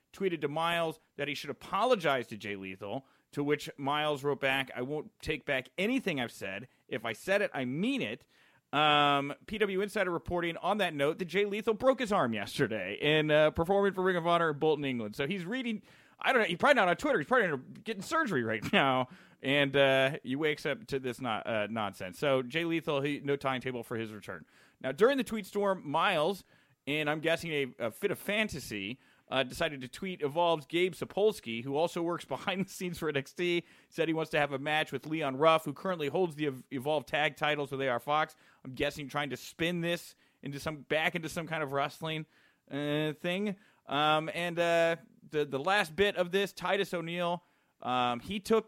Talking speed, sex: 210 wpm, male